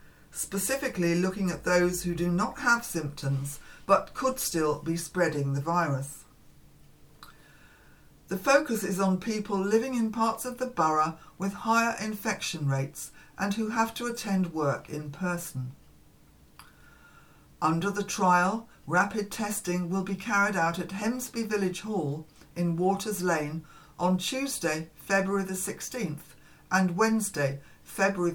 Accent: British